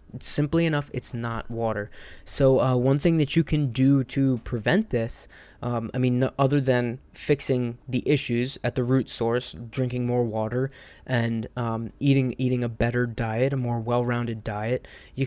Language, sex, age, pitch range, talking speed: English, male, 20-39, 115-135 Hz, 175 wpm